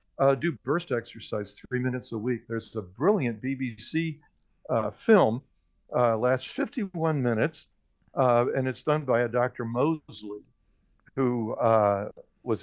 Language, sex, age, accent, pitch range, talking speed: English, male, 60-79, American, 110-135 Hz, 140 wpm